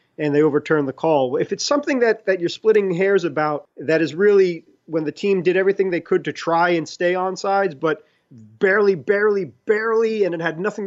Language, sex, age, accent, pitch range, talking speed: English, male, 30-49, American, 150-190 Hz, 210 wpm